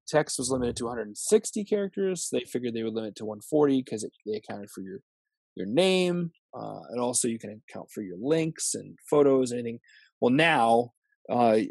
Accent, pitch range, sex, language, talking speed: American, 115-155 Hz, male, English, 190 wpm